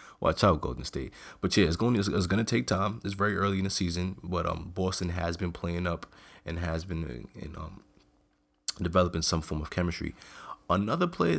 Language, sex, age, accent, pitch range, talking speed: English, male, 20-39, American, 75-95 Hz, 210 wpm